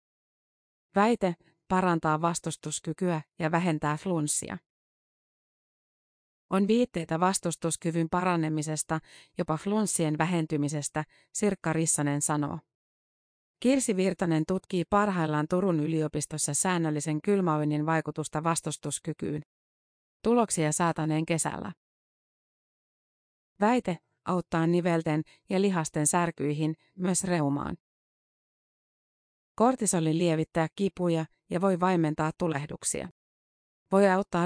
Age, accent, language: 30-49, native, Finnish